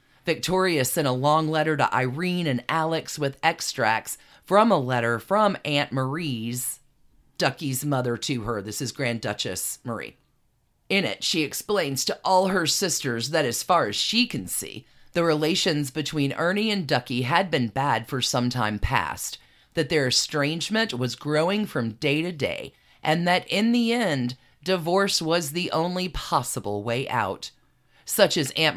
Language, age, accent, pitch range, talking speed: English, 40-59, American, 130-180 Hz, 165 wpm